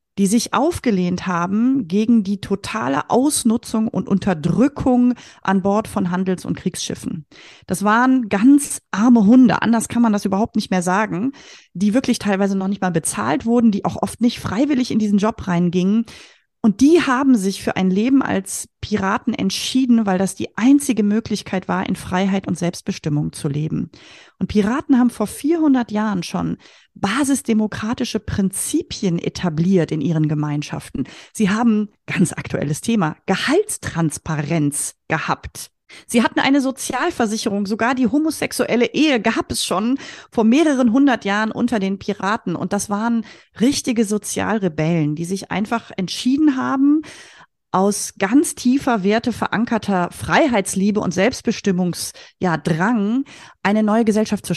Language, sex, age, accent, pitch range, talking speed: German, female, 30-49, German, 185-245 Hz, 140 wpm